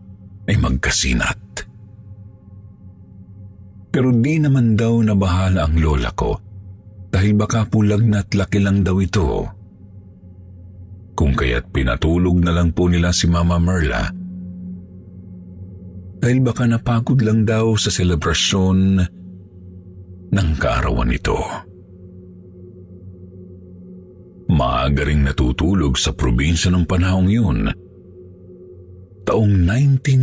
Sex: male